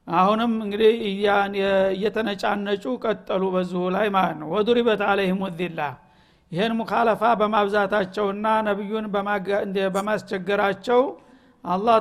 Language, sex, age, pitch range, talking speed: Amharic, male, 60-79, 195-225 Hz, 90 wpm